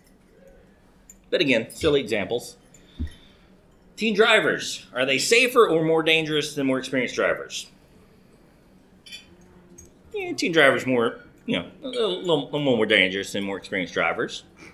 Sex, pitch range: male, 135-205 Hz